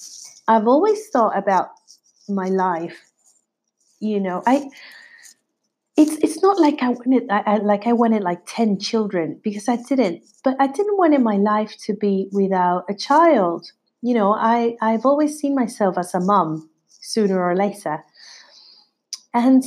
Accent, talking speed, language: British, 160 wpm, English